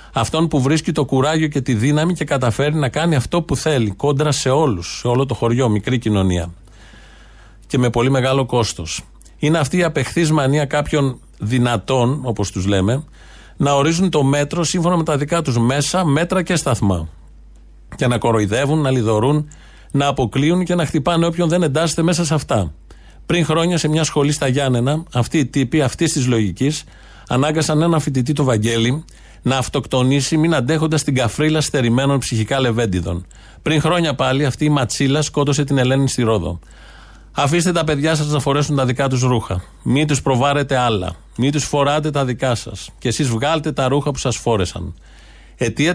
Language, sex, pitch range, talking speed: Greek, male, 115-155 Hz, 175 wpm